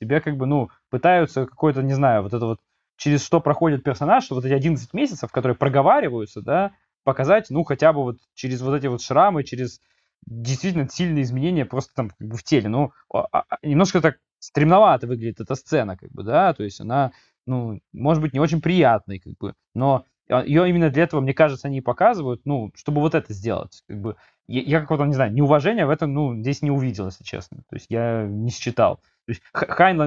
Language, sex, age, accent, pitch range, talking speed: Russian, male, 20-39, native, 120-150 Hz, 200 wpm